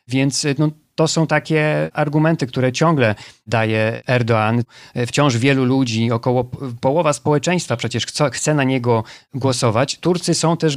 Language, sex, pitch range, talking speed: Polish, male, 120-145 Hz, 130 wpm